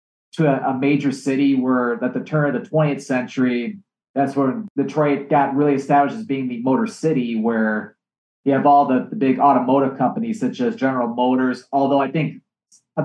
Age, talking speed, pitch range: 30-49, 190 wpm, 130-165 Hz